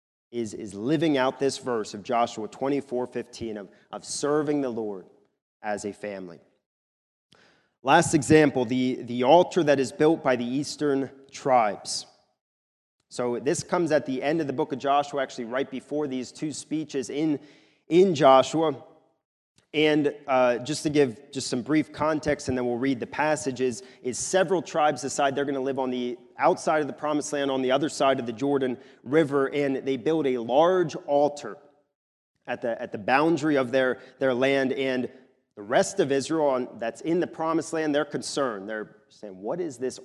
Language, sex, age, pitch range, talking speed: English, male, 30-49, 125-150 Hz, 180 wpm